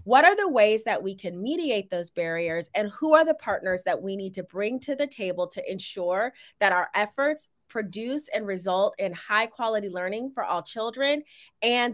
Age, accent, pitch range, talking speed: 20-39, American, 180-255 Hz, 195 wpm